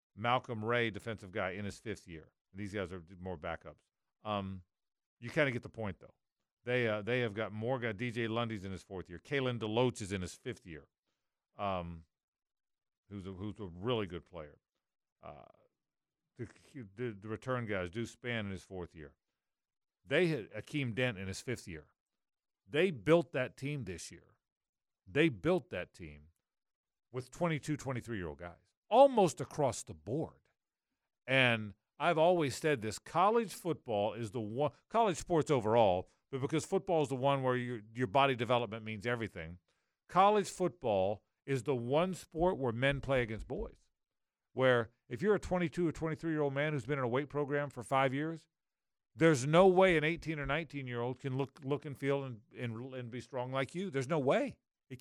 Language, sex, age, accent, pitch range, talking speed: English, male, 50-69, American, 105-150 Hz, 185 wpm